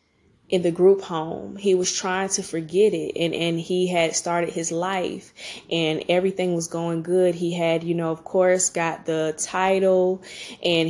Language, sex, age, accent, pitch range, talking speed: English, female, 20-39, American, 170-190 Hz, 175 wpm